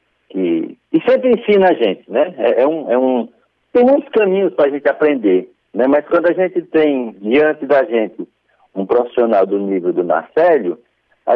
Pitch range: 145-220 Hz